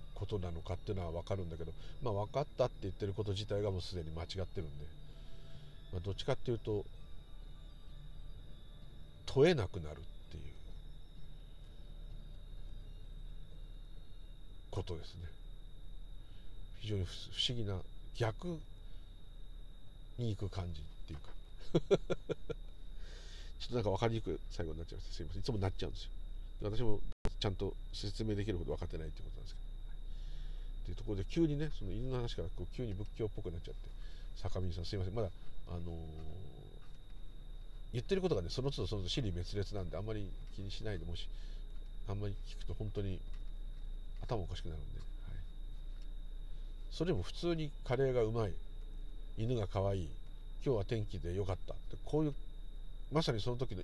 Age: 50-69